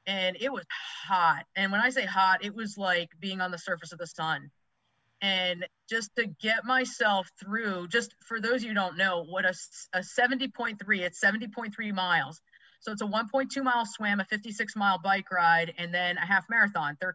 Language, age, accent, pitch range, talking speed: English, 30-49, American, 180-225 Hz, 195 wpm